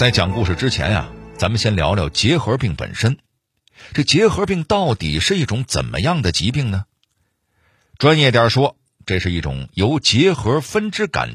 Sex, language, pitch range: male, Chinese, 85-125 Hz